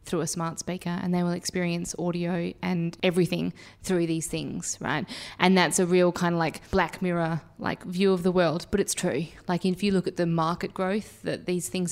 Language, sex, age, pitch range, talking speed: English, female, 20-39, 170-185 Hz, 215 wpm